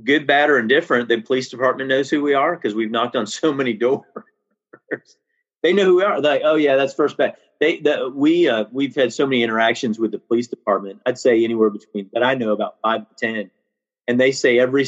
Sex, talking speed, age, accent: male, 240 wpm, 40-59, American